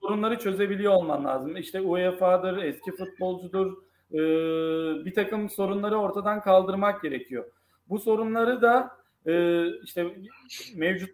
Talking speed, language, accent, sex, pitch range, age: 100 wpm, Turkish, native, male, 175-205 Hz, 40-59